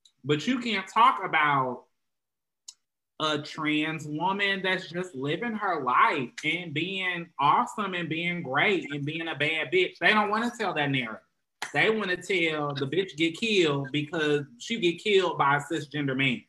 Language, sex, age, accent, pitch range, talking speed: English, male, 20-39, American, 135-180 Hz, 170 wpm